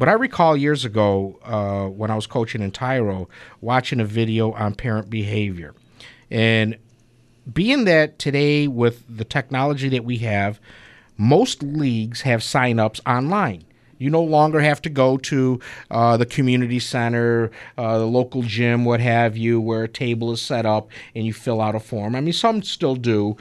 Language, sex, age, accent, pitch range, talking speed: English, male, 50-69, American, 110-140 Hz, 175 wpm